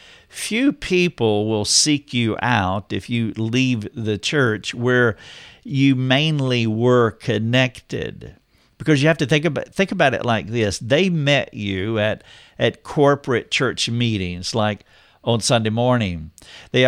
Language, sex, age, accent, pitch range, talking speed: English, male, 50-69, American, 110-135 Hz, 140 wpm